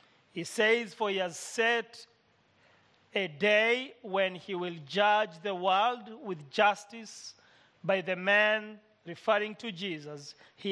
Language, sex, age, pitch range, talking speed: English, male, 40-59, 180-220 Hz, 130 wpm